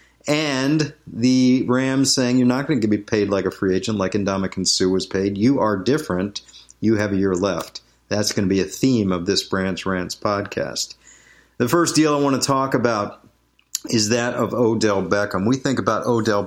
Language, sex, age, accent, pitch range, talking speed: English, male, 50-69, American, 100-130 Hz, 200 wpm